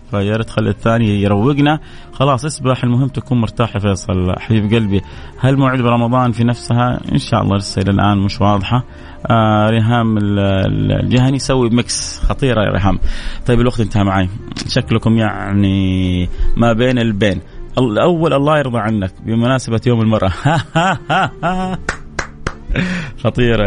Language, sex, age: Arabic, male, 30-49